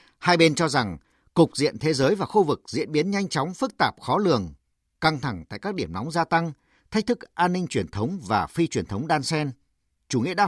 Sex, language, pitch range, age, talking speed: male, Vietnamese, 130-195 Hz, 50-69, 240 wpm